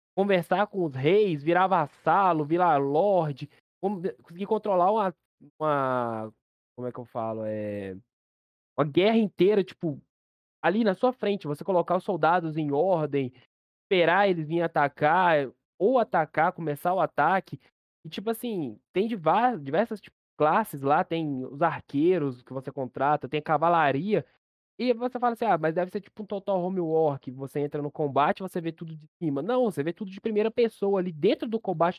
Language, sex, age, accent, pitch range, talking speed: Portuguese, male, 20-39, Brazilian, 150-205 Hz, 165 wpm